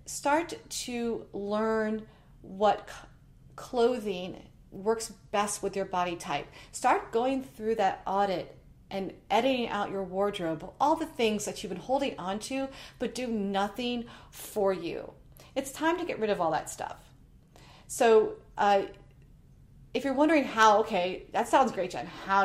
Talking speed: 150 wpm